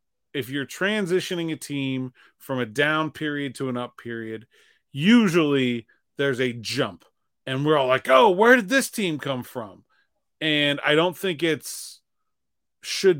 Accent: American